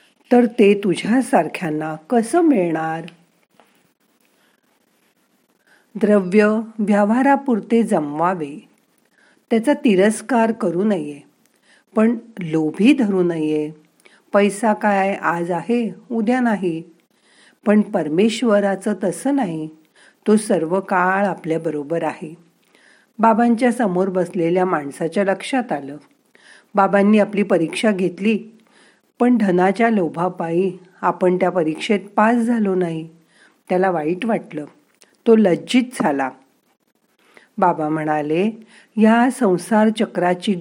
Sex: female